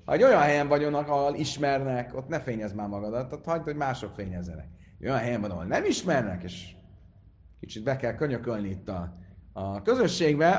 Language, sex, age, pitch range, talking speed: Hungarian, male, 30-49, 95-135 Hz, 175 wpm